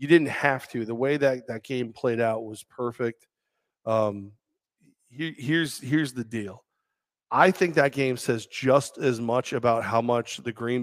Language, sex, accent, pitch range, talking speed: English, male, American, 120-150 Hz, 170 wpm